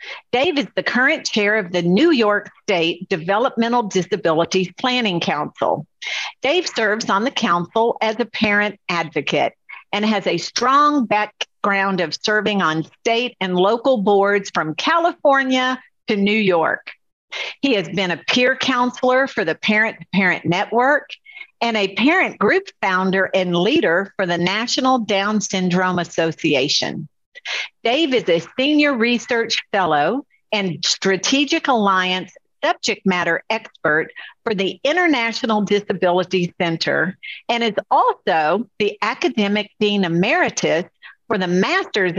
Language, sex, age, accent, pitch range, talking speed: English, female, 50-69, American, 180-240 Hz, 130 wpm